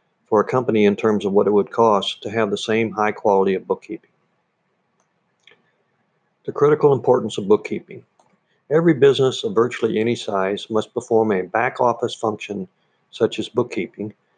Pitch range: 105-125 Hz